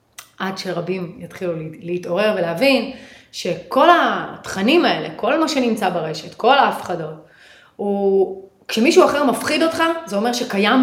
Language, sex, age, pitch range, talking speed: Hebrew, female, 30-49, 210-275 Hz, 120 wpm